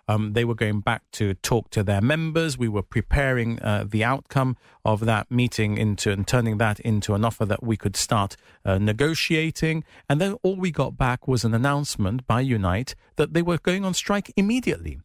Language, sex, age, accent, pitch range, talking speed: English, male, 40-59, British, 110-150 Hz, 200 wpm